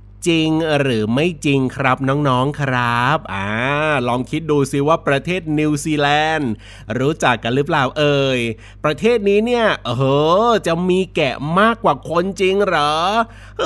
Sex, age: male, 30-49